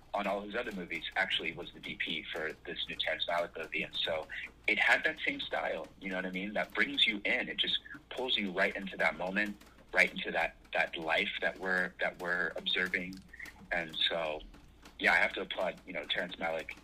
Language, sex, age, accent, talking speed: English, male, 30-49, American, 215 wpm